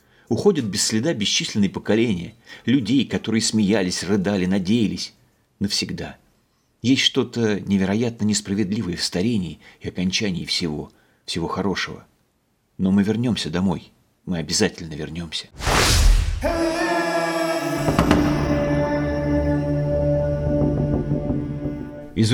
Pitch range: 80-115 Hz